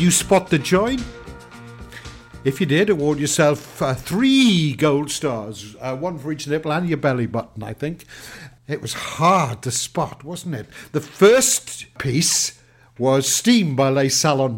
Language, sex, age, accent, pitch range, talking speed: English, male, 60-79, British, 125-155 Hz, 160 wpm